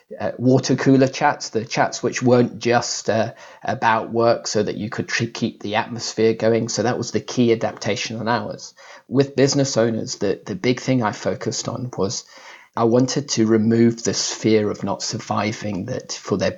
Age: 40-59